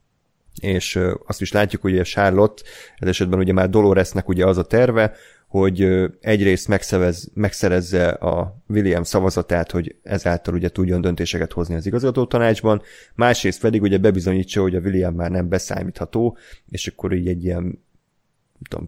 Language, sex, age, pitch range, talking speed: Hungarian, male, 30-49, 90-105 Hz, 150 wpm